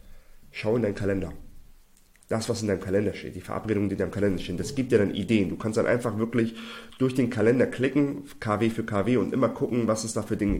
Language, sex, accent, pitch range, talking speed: German, male, German, 95-115 Hz, 240 wpm